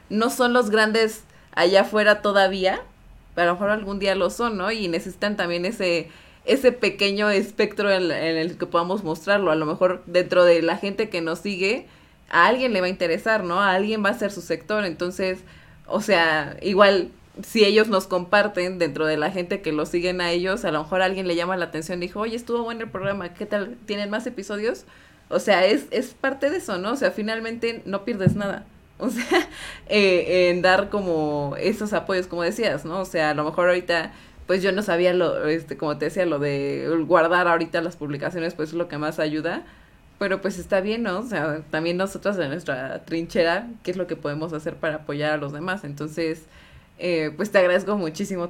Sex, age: female, 20-39